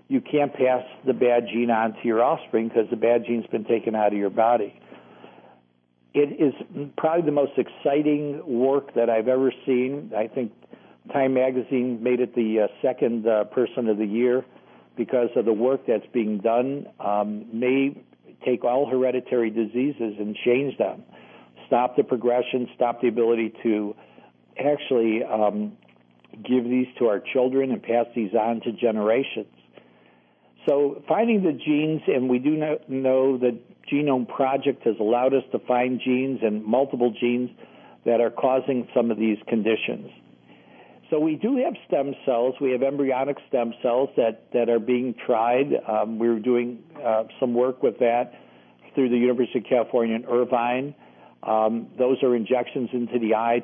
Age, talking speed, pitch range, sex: 60-79, 160 wpm, 110-130 Hz, male